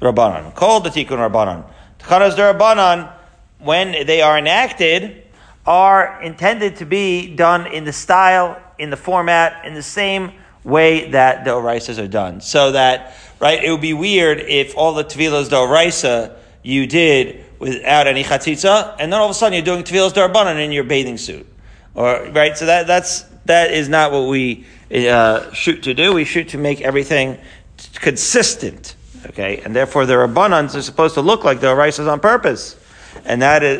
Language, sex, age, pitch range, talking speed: English, male, 40-59, 130-175 Hz, 180 wpm